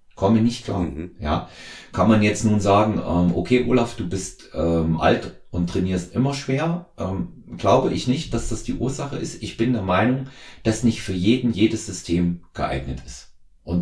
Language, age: German, 40-59